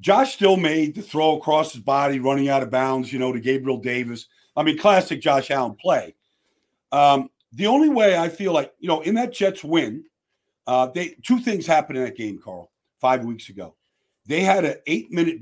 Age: 50-69